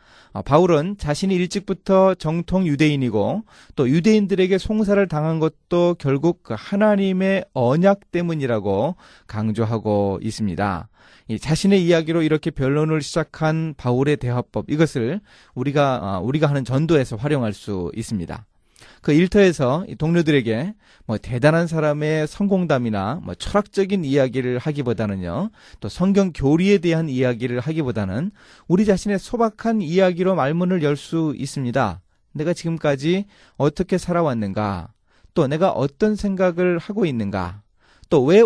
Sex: male